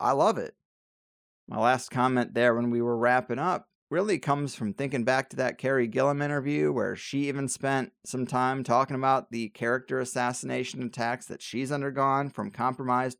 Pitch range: 125-155 Hz